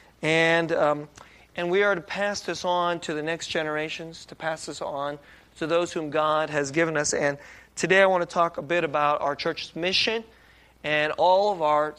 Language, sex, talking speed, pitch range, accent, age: English, male, 200 wpm, 145-175 Hz, American, 30-49